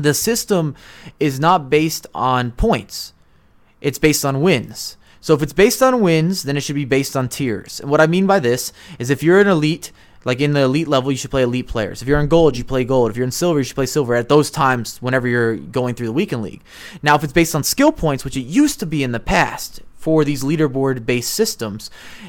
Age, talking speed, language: 20-39, 240 wpm, English